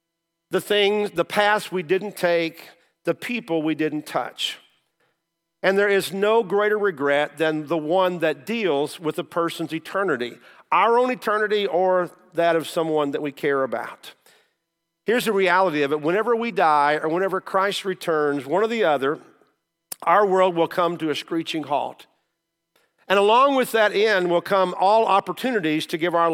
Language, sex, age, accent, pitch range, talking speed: English, male, 50-69, American, 155-195 Hz, 170 wpm